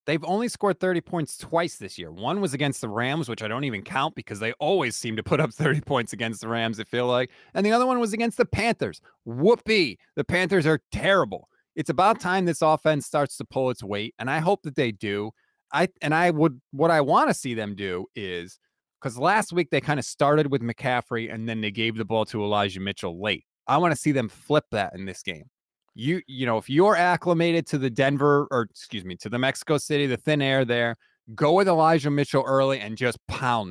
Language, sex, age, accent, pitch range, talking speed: English, male, 30-49, American, 120-170 Hz, 235 wpm